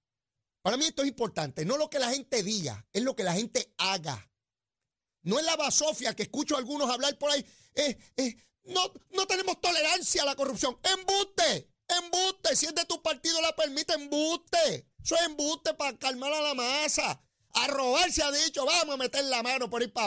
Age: 30-49